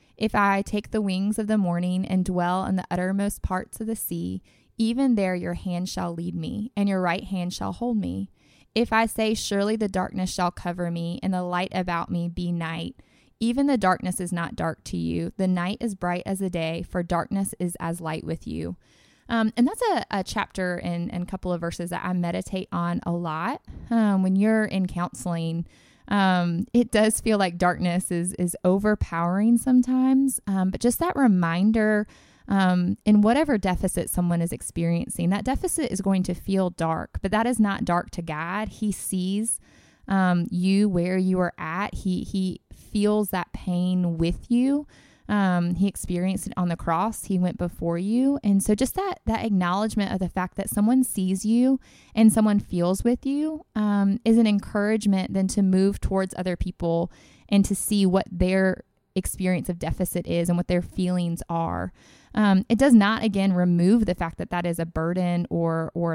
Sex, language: female, English